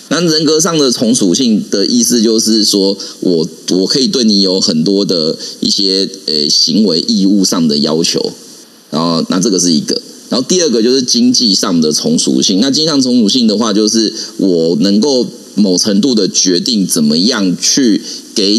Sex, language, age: male, Chinese, 30-49